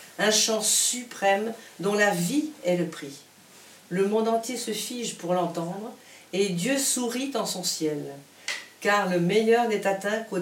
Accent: French